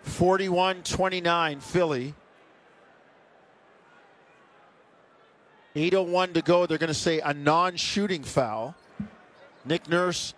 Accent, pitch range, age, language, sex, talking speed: American, 155-190 Hz, 50-69, English, male, 75 wpm